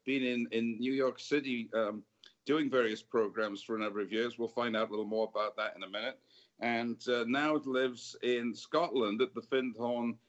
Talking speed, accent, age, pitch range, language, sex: 210 wpm, British, 50-69, 115-130 Hz, English, male